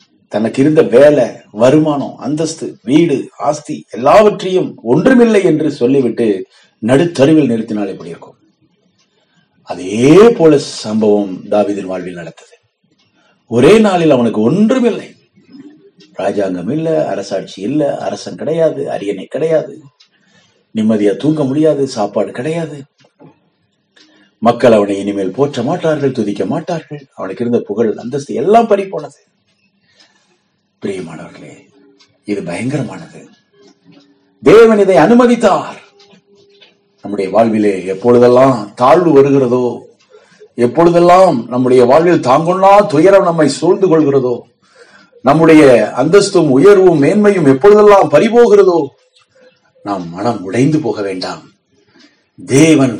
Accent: native